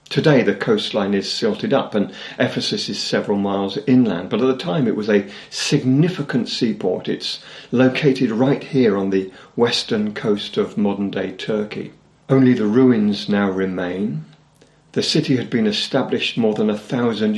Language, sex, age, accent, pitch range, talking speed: English, male, 50-69, British, 105-155 Hz, 160 wpm